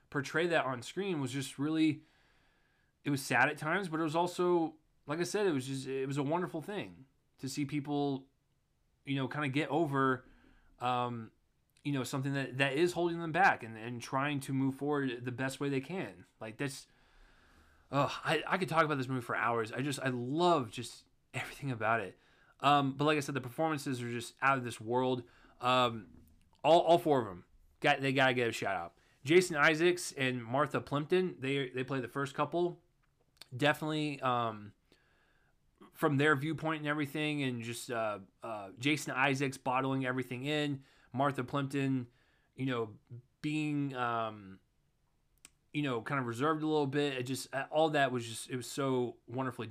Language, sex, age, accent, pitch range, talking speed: English, male, 20-39, American, 125-150 Hz, 185 wpm